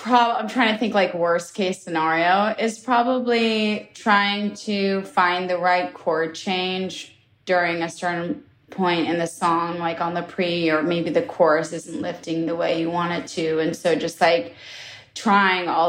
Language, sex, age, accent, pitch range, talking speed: English, female, 20-39, American, 160-185 Hz, 175 wpm